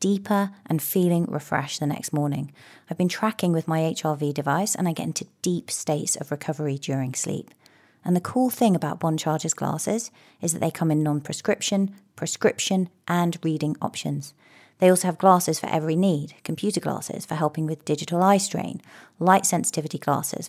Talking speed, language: 175 wpm, English